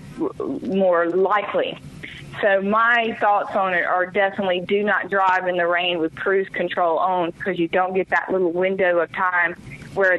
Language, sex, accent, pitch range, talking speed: English, female, American, 170-200 Hz, 170 wpm